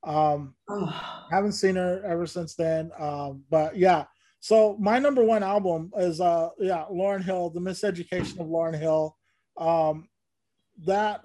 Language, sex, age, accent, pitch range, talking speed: English, male, 30-49, American, 155-200 Hz, 145 wpm